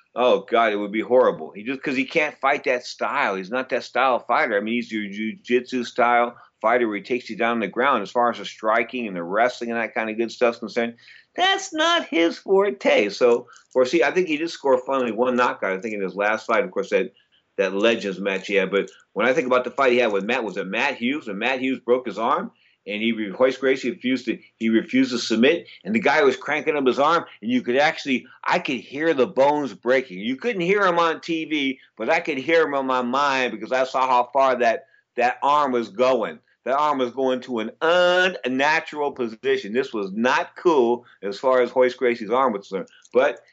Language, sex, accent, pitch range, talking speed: English, male, American, 120-165 Hz, 240 wpm